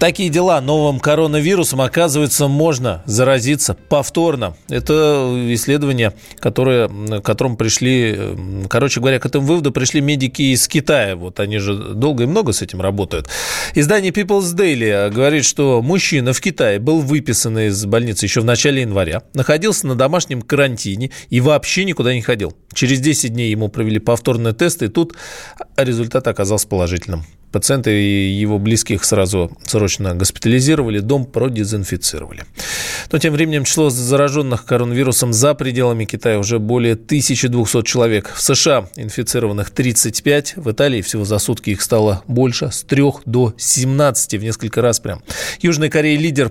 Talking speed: 145 wpm